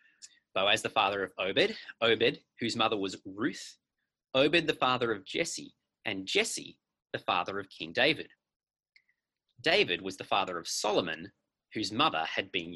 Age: 30-49